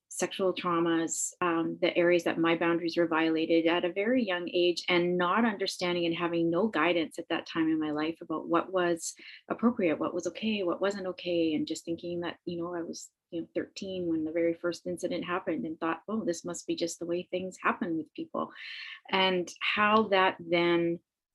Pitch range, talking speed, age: 170-195 Hz, 195 wpm, 30-49